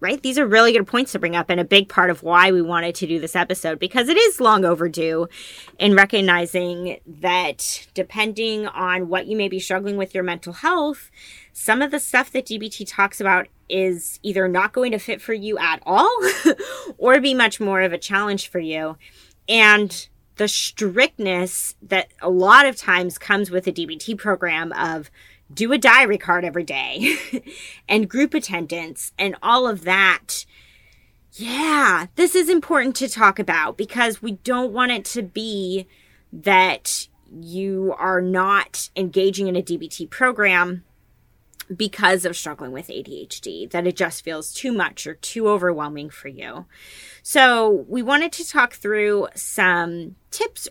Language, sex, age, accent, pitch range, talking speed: English, female, 20-39, American, 180-235 Hz, 165 wpm